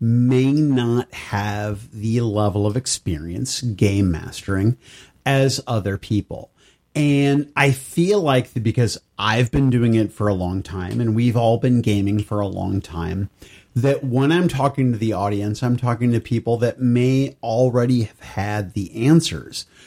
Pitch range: 105-140 Hz